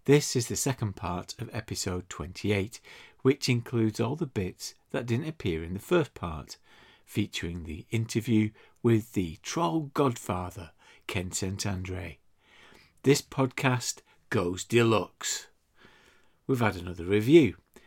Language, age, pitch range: English, 50-69, 95-130 Hz